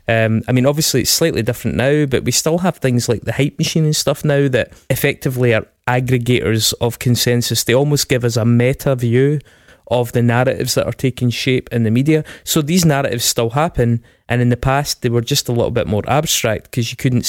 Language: English